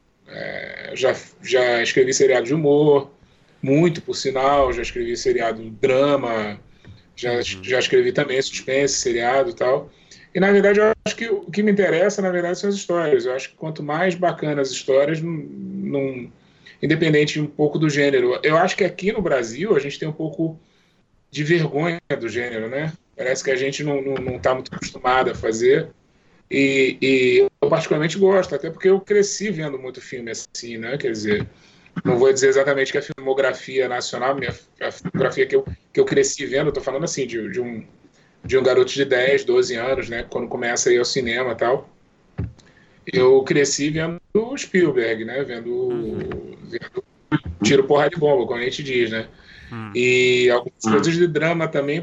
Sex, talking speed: male, 185 wpm